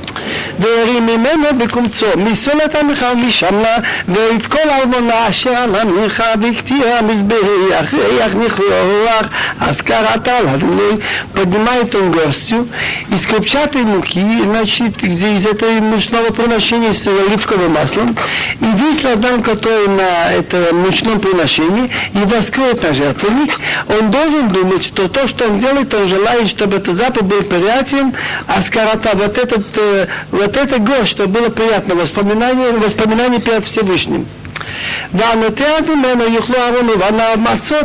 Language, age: Russian, 60-79